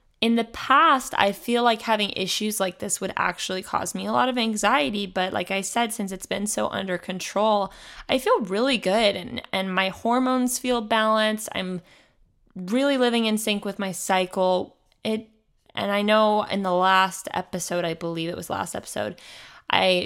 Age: 20-39